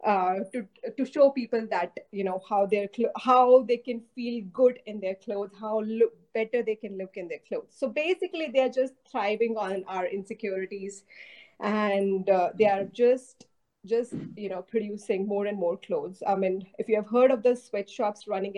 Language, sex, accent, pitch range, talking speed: English, female, Indian, 195-235 Hz, 195 wpm